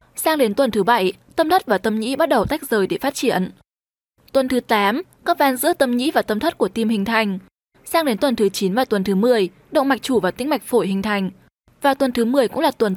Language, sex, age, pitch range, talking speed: Vietnamese, female, 10-29, 210-280 Hz, 265 wpm